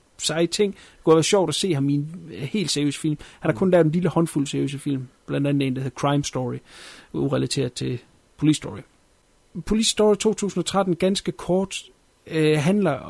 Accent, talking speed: native, 175 wpm